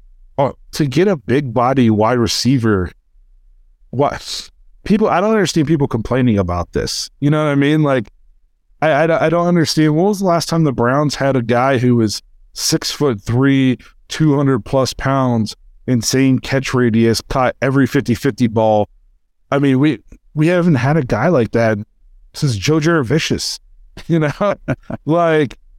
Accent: American